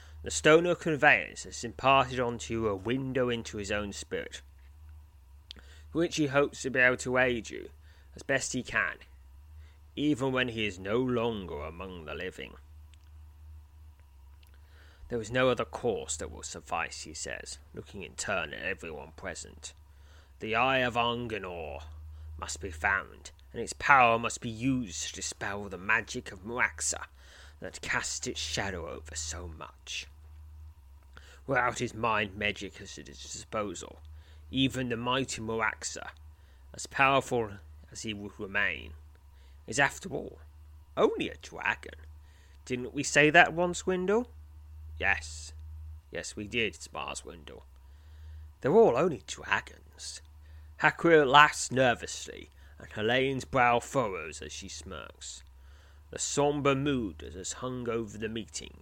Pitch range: 75-120 Hz